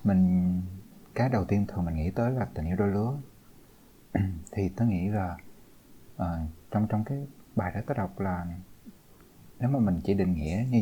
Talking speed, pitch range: 185 wpm, 90-120 Hz